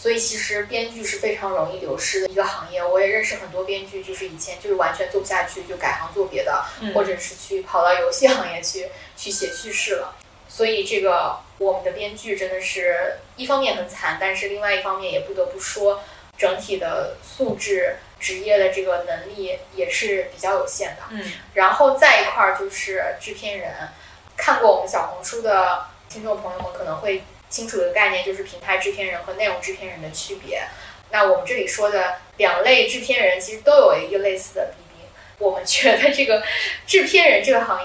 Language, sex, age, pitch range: Chinese, female, 10-29, 190-275 Hz